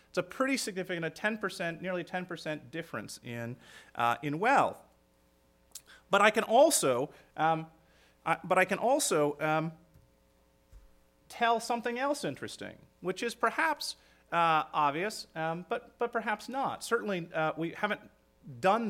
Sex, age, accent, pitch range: male, 30-49, American, 140-210 Hz